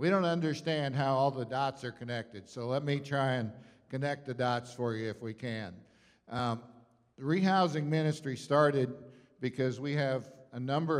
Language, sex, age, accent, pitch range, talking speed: English, male, 50-69, American, 120-145 Hz, 175 wpm